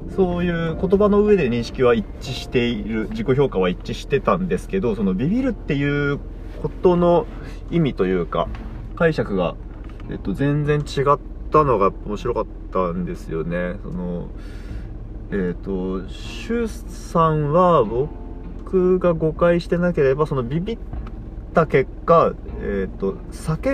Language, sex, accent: Japanese, male, native